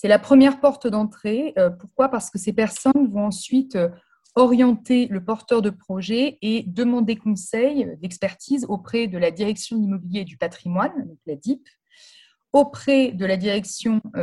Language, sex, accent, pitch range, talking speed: French, female, French, 180-235 Hz, 150 wpm